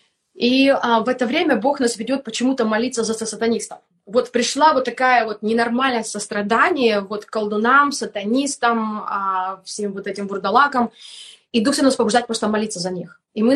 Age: 20-39